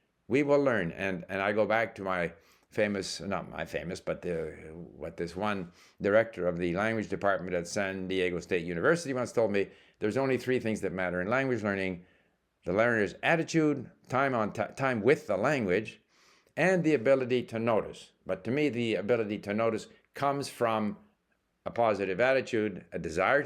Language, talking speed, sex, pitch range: English, 175 wpm, male, 100-135 Hz